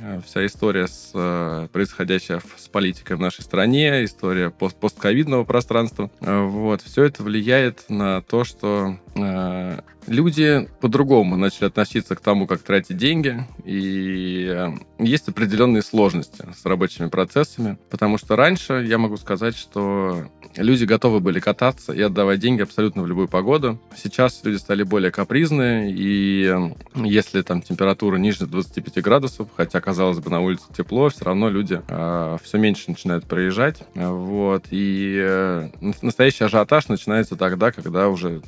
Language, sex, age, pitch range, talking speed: Russian, male, 20-39, 90-115 Hz, 140 wpm